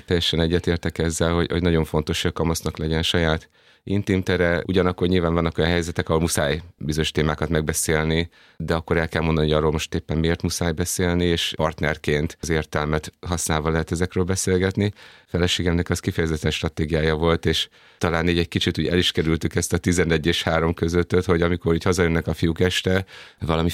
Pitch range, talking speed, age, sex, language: 80-90 Hz, 180 wpm, 30-49, male, Hungarian